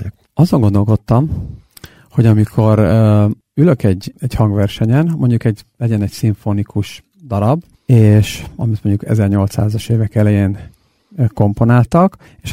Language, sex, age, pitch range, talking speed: Hungarian, male, 50-69, 105-135 Hz, 105 wpm